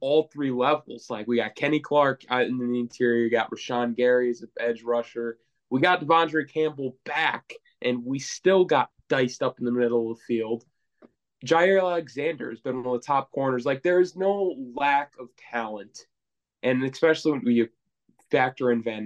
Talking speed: 185 wpm